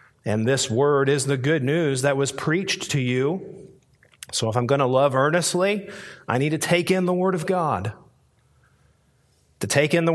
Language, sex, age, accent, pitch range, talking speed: English, male, 40-59, American, 140-180 Hz, 190 wpm